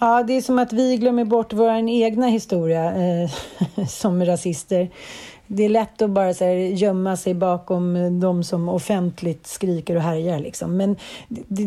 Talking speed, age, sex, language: 150 wpm, 40-59, female, Swedish